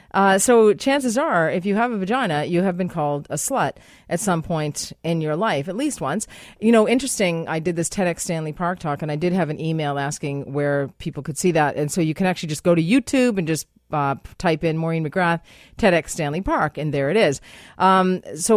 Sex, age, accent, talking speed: female, 30-49, American, 230 wpm